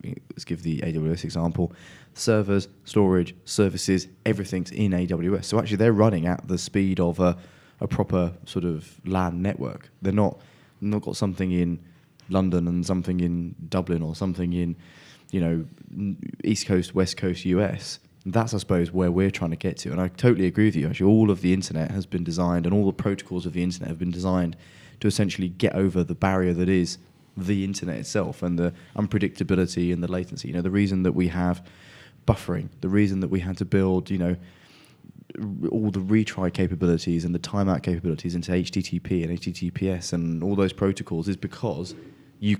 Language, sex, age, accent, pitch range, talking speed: English, male, 20-39, British, 90-100 Hz, 190 wpm